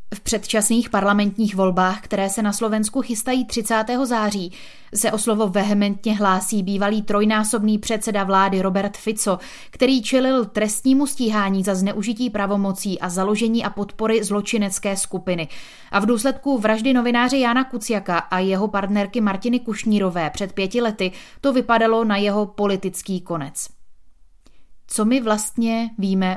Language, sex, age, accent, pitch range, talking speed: Czech, female, 20-39, native, 185-220 Hz, 135 wpm